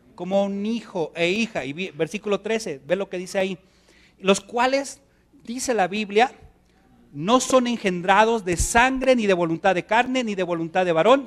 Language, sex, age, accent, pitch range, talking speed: Spanish, male, 40-59, Mexican, 165-225 Hz, 175 wpm